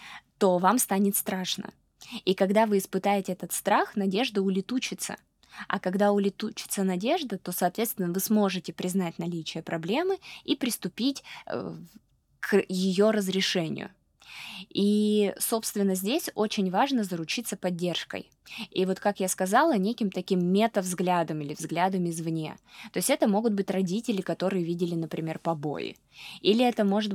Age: 20-39